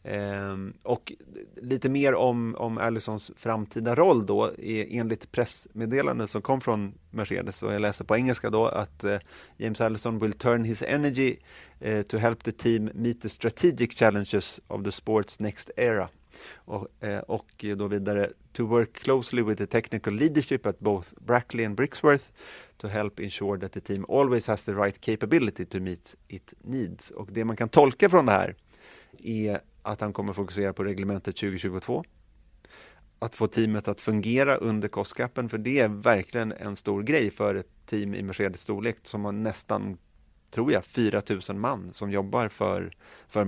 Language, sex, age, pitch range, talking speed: Swedish, male, 30-49, 100-115 Hz, 175 wpm